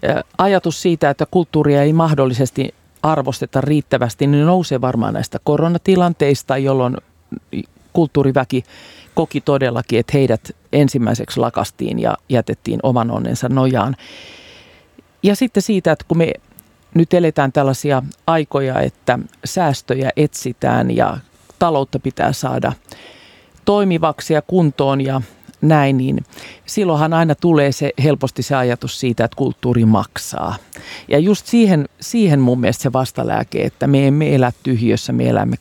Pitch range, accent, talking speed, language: 130-155 Hz, native, 125 wpm, Finnish